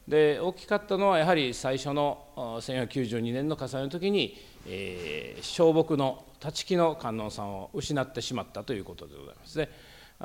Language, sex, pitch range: Japanese, male, 130-175 Hz